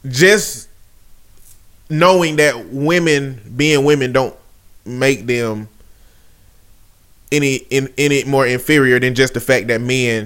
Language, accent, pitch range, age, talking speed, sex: English, American, 110-165 Hz, 20-39, 115 wpm, male